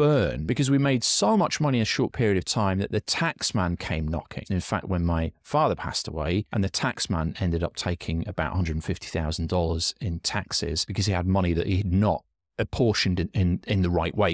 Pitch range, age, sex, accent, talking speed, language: 90-130 Hz, 30-49, male, British, 210 wpm, English